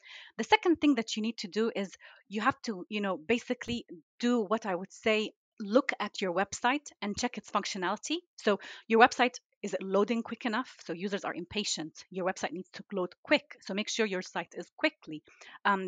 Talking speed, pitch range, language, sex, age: 200 wpm, 195-250 Hz, English, female, 30-49